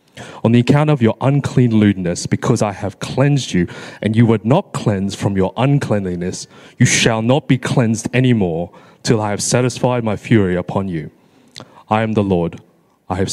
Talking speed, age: 185 wpm, 20-39